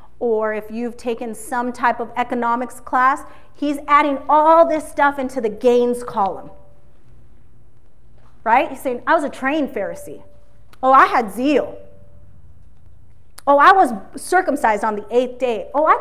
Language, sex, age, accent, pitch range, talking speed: English, female, 30-49, American, 220-285 Hz, 150 wpm